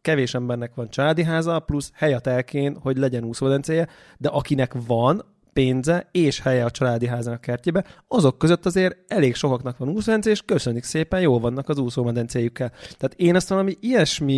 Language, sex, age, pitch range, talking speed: Hungarian, male, 30-49, 125-150 Hz, 170 wpm